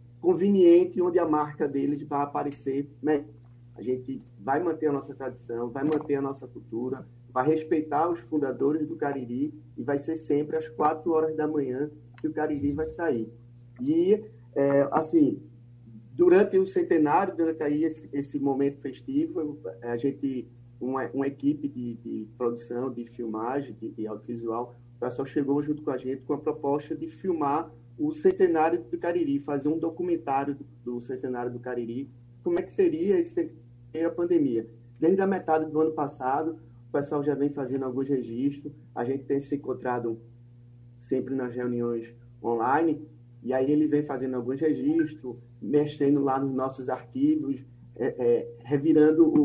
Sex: male